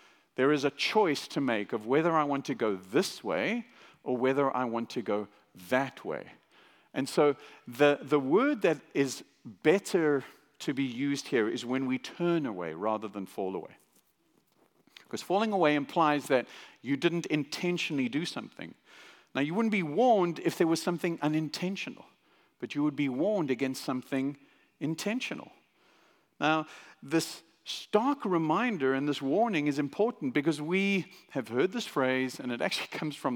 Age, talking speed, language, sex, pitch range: 50-69, 165 wpm, English, male, 130-180 Hz